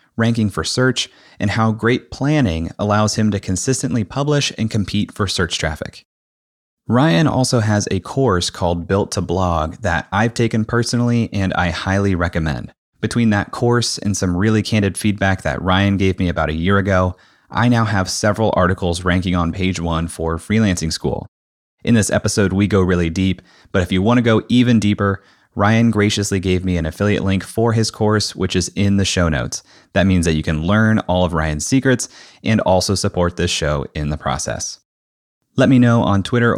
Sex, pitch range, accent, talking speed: male, 90-110 Hz, American, 190 wpm